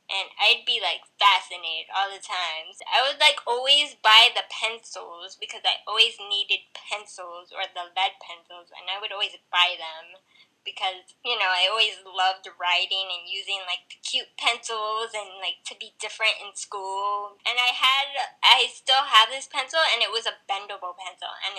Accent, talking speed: American, 180 wpm